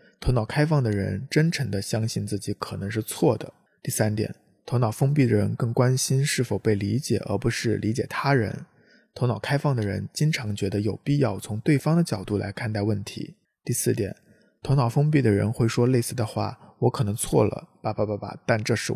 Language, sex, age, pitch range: Chinese, male, 20-39, 105-130 Hz